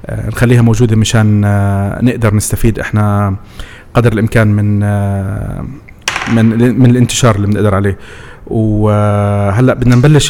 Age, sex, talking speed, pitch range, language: 30-49, male, 105 wpm, 100-120 Hz, Arabic